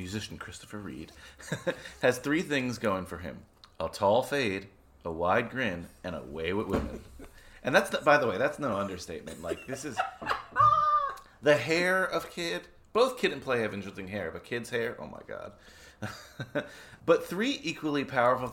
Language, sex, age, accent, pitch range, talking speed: English, male, 30-49, American, 95-145 Hz, 170 wpm